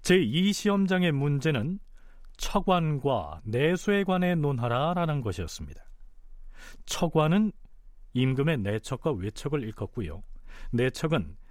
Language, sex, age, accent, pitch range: Korean, male, 40-59, native, 115-185 Hz